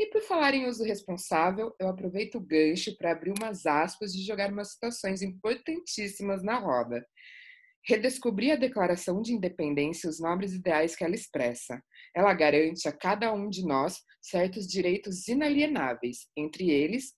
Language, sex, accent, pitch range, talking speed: Portuguese, female, Brazilian, 160-235 Hz, 155 wpm